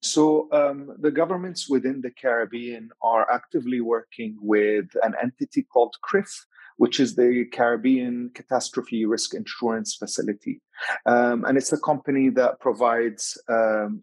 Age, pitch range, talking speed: 30-49, 115-145 Hz, 135 wpm